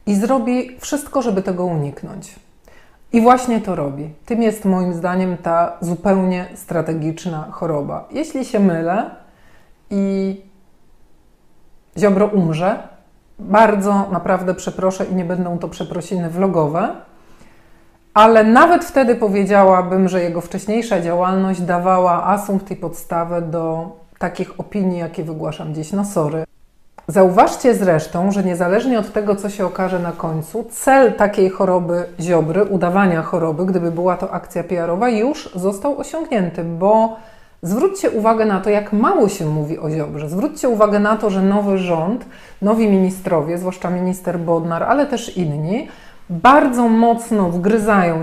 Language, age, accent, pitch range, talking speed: Polish, 40-59, native, 175-215 Hz, 135 wpm